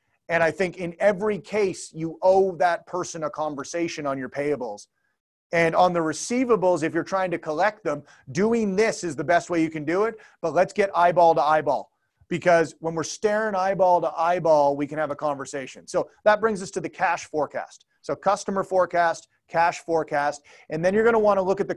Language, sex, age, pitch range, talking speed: English, male, 30-49, 155-190 Hz, 205 wpm